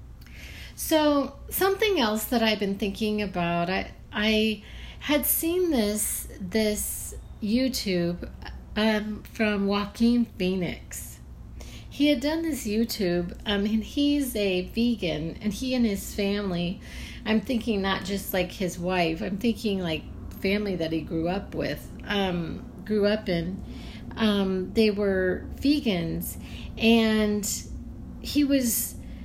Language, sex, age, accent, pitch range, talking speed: English, female, 40-59, American, 180-230 Hz, 125 wpm